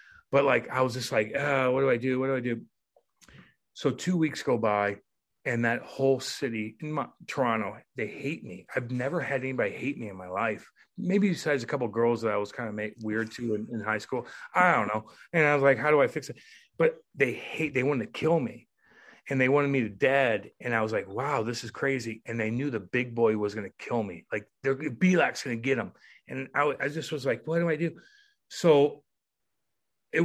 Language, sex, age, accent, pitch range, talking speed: English, male, 30-49, American, 120-170 Hz, 240 wpm